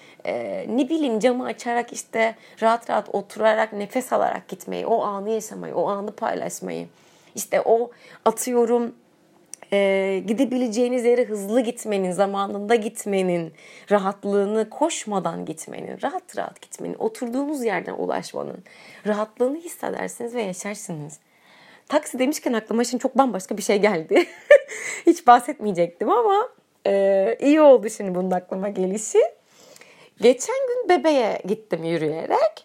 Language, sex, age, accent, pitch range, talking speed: Turkish, female, 30-49, native, 210-325 Hz, 120 wpm